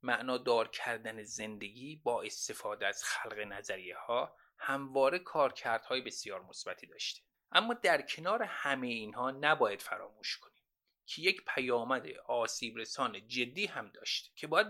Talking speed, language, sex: 135 wpm, Persian, male